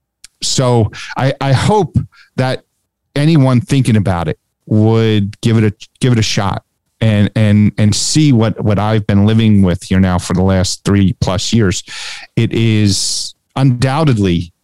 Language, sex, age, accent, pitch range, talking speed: English, male, 40-59, American, 95-125 Hz, 155 wpm